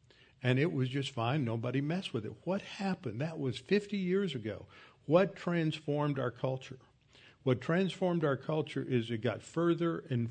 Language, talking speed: English, 170 wpm